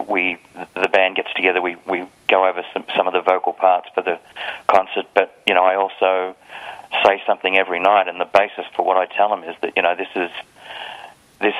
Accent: Australian